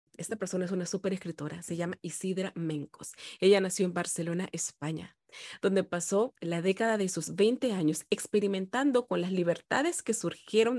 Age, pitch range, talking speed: 30-49, 170-215 Hz, 155 wpm